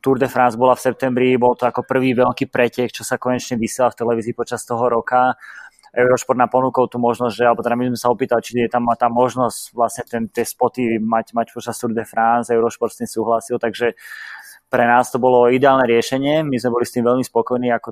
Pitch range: 115-125 Hz